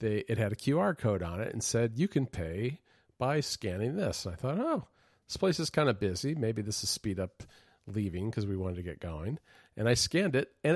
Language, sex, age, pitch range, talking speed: English, male, 40-59, 95-120 Hz, 240 wpm